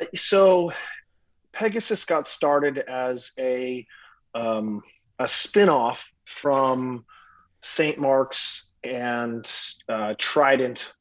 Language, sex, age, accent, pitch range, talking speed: English, male, 30-49, American, 115-135 Hz, 80 wpm